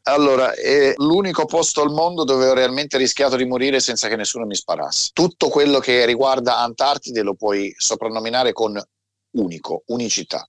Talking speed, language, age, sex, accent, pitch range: 160 wpm, Italian, 30-49, male, native, 100-130 Hz